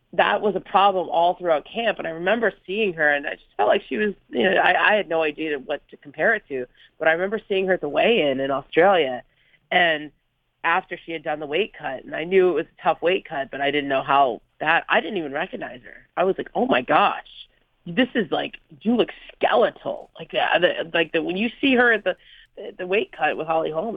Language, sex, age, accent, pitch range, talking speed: English, female, 30-49, American, 140-185 Hz, 245 wpm